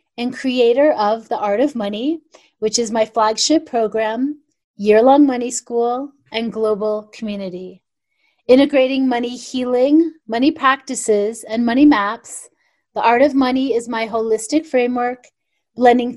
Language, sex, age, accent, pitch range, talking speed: English, female, 30-49, American, 215-265 Hz, 130 wpm